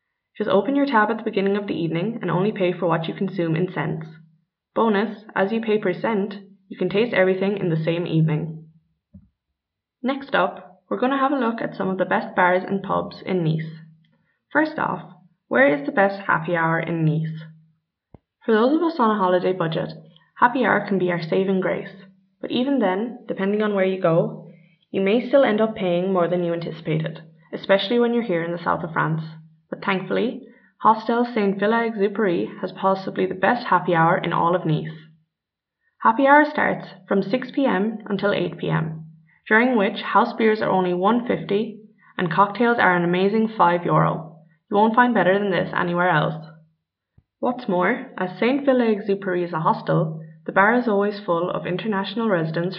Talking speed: 185 wpm